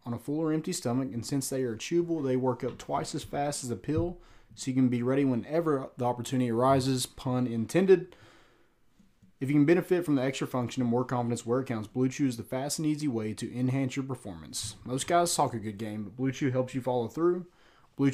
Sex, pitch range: male, 115-145 Hz